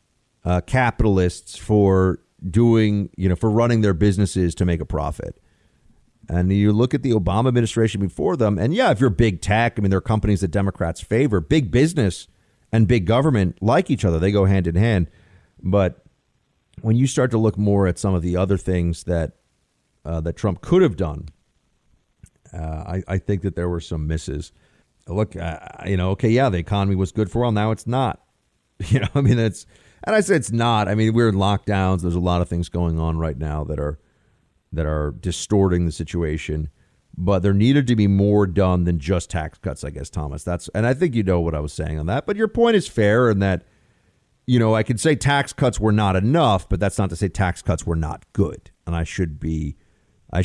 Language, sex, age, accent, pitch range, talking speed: English, male, 40-59, American, 85-110 Hz, 220 wpm